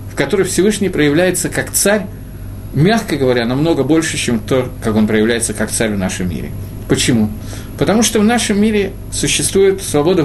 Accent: native